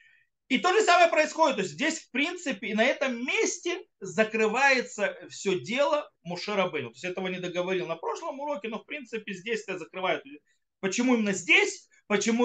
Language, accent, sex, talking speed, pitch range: Russian, native, male, 175 wpm, 185-285 Hz